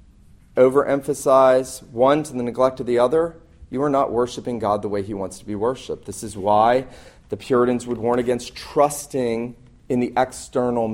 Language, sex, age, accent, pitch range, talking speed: English, male, 30-49, American, 110-130 Hz, 175 wpm